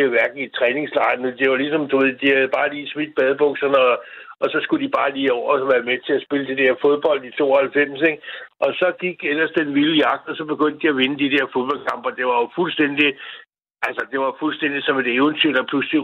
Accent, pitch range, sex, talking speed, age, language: native, 135-155 Hz, male, 235 wpm, 60-79, Danish